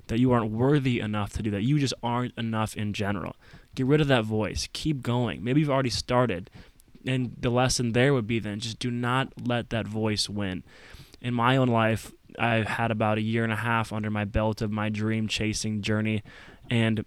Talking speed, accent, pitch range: 205 wpm, American, 105-125 Hz